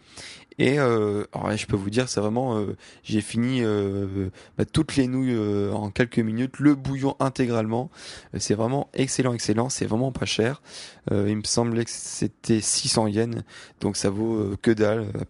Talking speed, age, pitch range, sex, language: 190 wpm, 20-39, 105-120 Hz, male, French